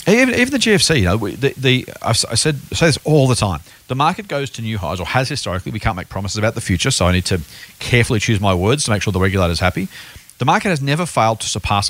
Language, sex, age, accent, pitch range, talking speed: English, male, 40-59, Australian, 100-140 Hz, 270 wpm